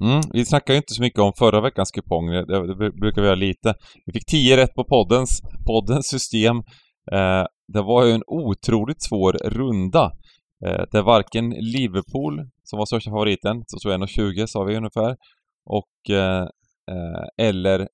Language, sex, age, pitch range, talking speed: Swedish, male, 20-39, 90-115 Hz, 175 wpm